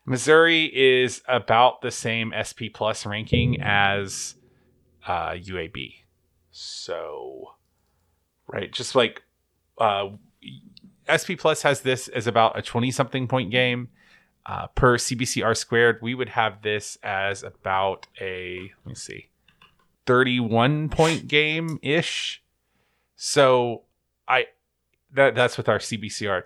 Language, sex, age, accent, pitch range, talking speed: English, male, 30-49, American, 105-130 Hz, 120 wpm